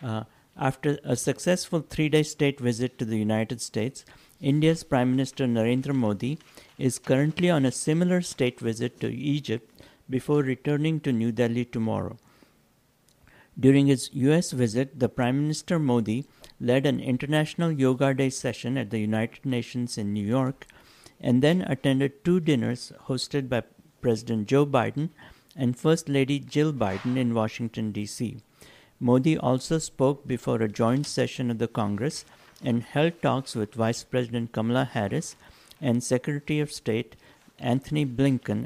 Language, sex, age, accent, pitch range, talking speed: English, male, 60-79, Indian, 120-145 Hz, 145 wpm